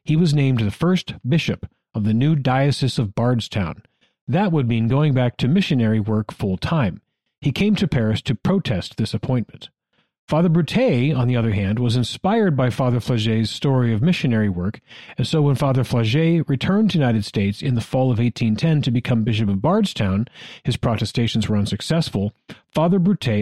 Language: English